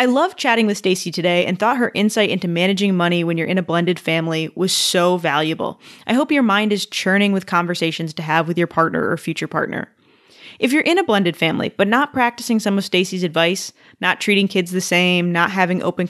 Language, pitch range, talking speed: English, 170-225 Hz, 220 wpm